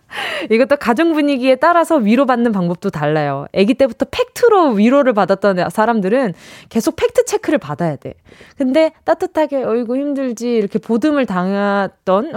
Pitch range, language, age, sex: 200-310 Hz, Korean, 20-39, female